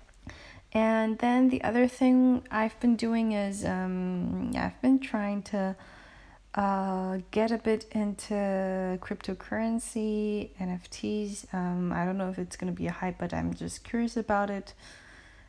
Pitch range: 165-215 Hz